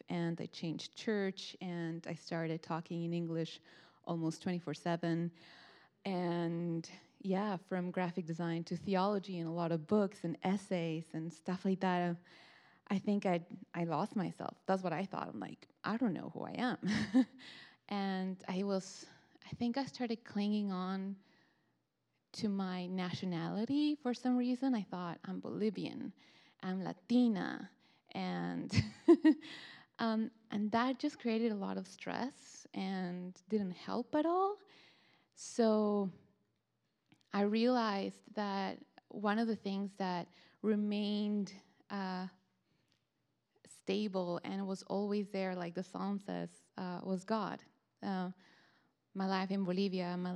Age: 20-39